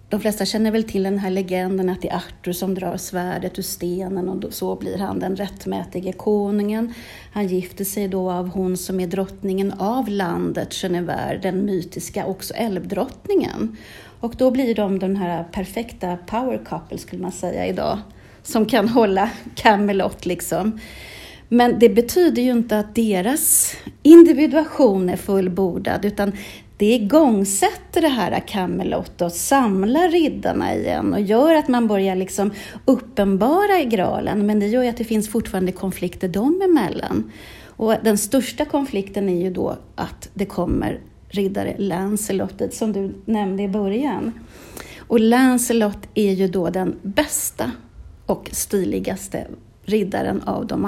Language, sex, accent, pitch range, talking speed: English, female, Swedish, 185-235 Hz, 150 wpm